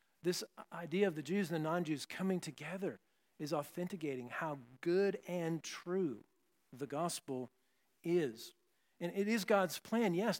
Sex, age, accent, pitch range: male, 50-69, American, 155-195 Hz